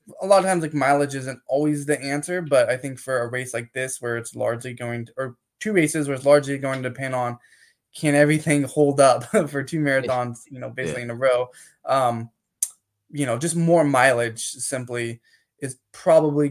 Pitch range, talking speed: 125-150 Hz, 200 wpm